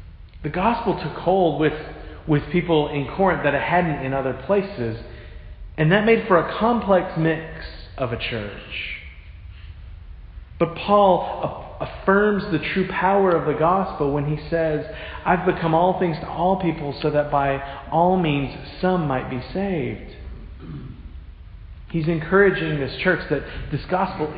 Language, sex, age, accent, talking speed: English, male, 40-59, American, 150 wpm